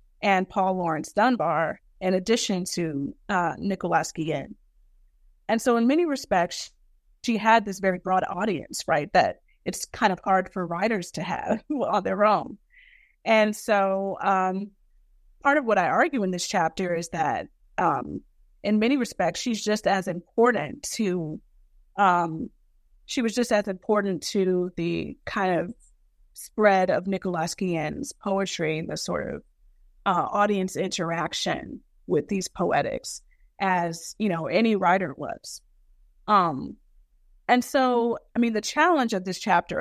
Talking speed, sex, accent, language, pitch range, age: 145 wpm, female, American, English, 180-220 Hz, 30-49